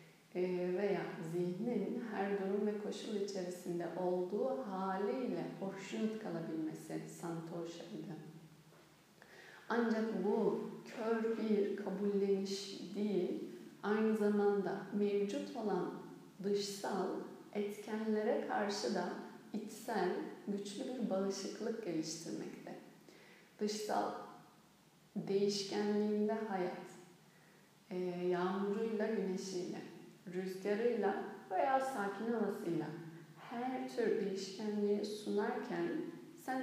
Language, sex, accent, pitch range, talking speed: Turkish, female, native, 180-215 Hz, 75 wpm